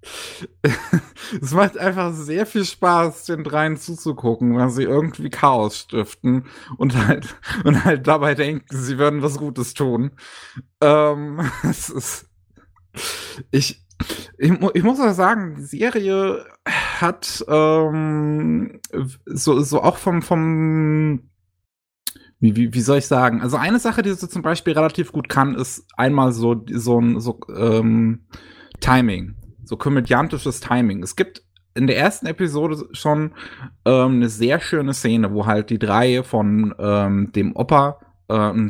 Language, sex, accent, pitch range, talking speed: German, male, German, 110-150 Hz, 145 wpm